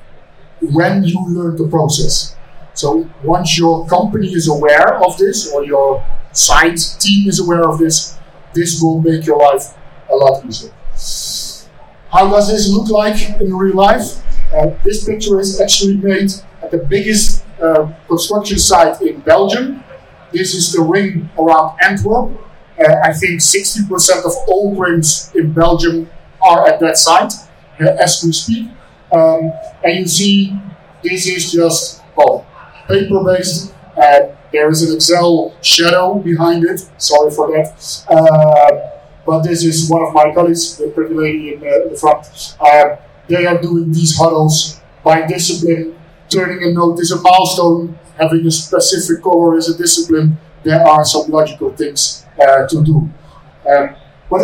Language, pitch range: English, 160-185 Hz